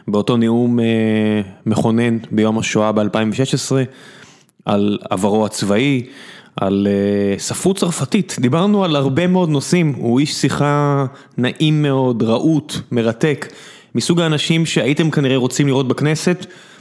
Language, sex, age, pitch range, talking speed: Hebrew, male, 20-39, 110-150 Hz, 110 wpm